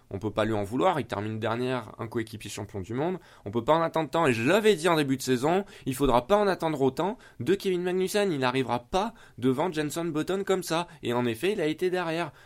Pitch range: 115-145 Hz